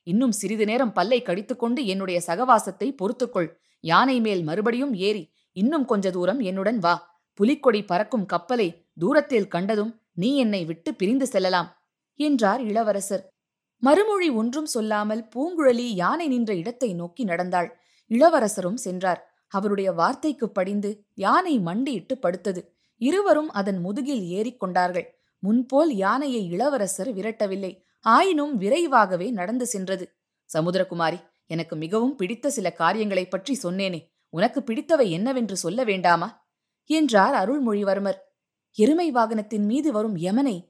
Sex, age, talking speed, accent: female, 20-39, 115 wpm, native